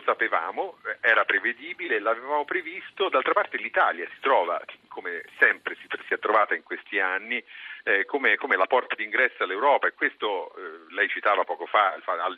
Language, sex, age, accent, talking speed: Italian, male, 40-59, native, 160 wpm